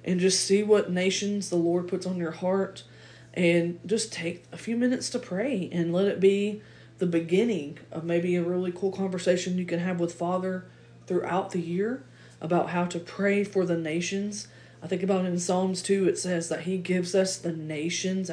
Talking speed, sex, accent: 200 wpm, female, American